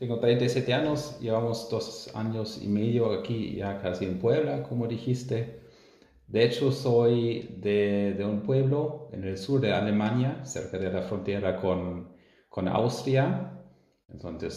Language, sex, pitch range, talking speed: Spanish, male, 90-120 Hz, 145 wpm